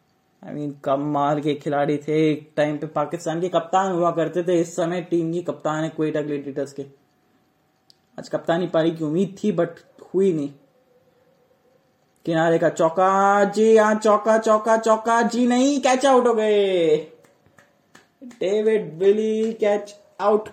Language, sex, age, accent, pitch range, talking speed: Hindi, male, 20-39, native, 155-200 Hz, 145 wpm